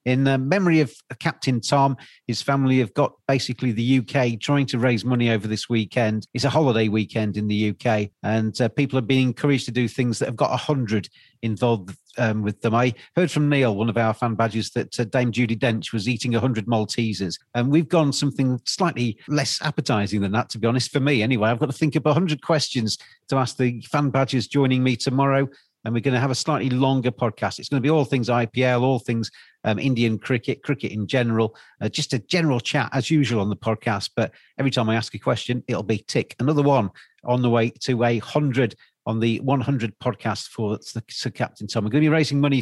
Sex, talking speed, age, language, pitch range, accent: male, 220 wpm, 40-59, English, 115-135 Hz, British